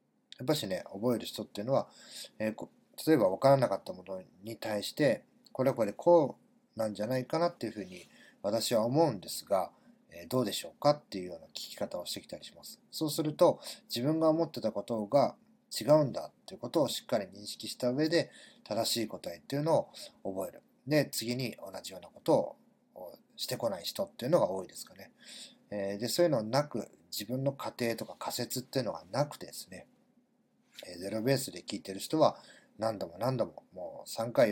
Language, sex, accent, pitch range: Japanese, male, native, 105-145 Hz